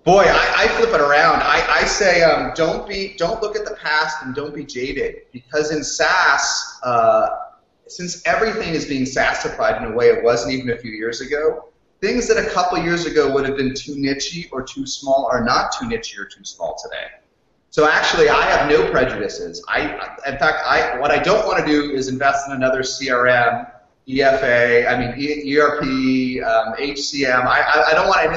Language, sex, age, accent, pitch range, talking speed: English, male, 30-49, American, 140-195 Hz, 200 wpm